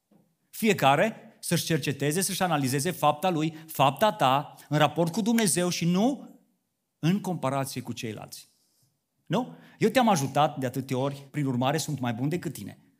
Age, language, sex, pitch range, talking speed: 40-59, Romanian, male, 135-205 Hz, 150 wpm